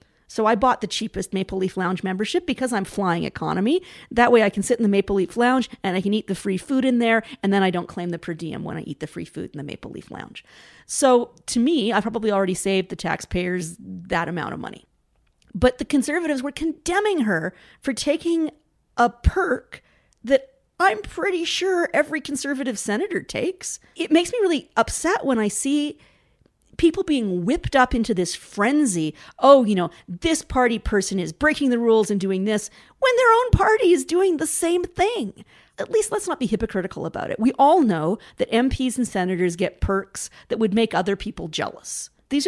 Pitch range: 190-285 Hz